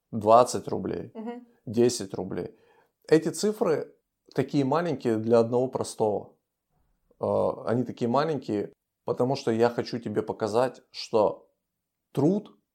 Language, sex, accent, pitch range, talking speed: Russian, male, native, 110-145 Hz, 105 wpm